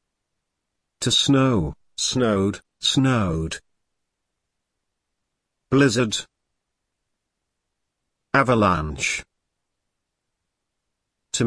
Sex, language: male, Hungarian